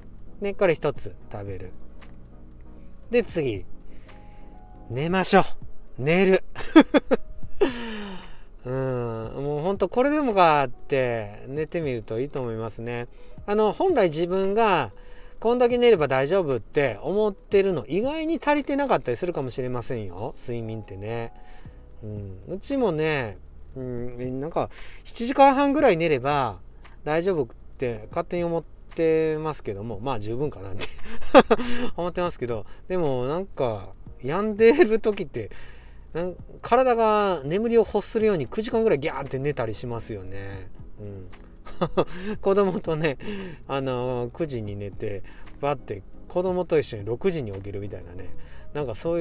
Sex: male